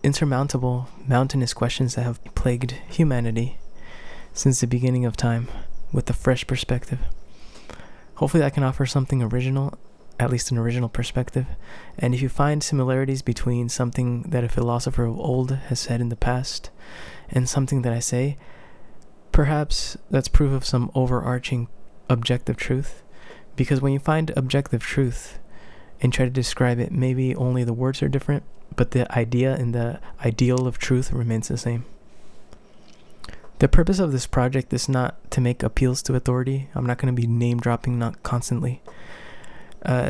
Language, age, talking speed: English, 20-39, 160 wpm